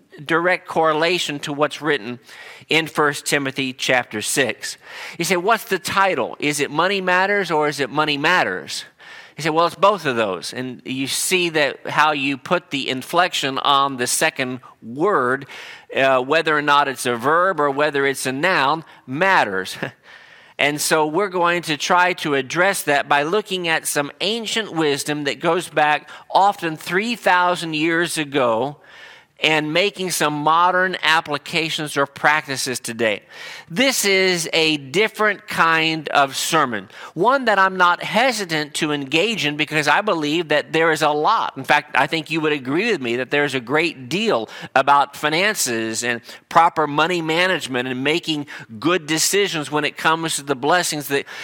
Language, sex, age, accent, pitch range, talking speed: English, male, 40-59, American, 140-175 Hz, 165 wpm